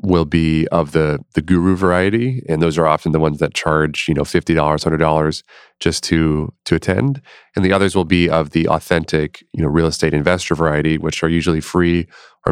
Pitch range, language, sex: 80-90 Hz, English, male